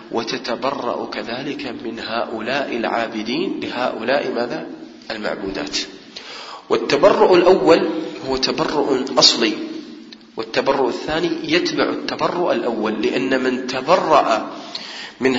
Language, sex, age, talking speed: English, male, 40-59, 85 wpm